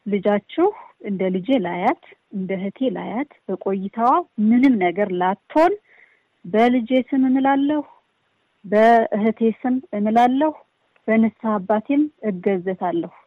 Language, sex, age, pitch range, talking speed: Amharic, female, 30-49, 205-255 Hz, 85 wpm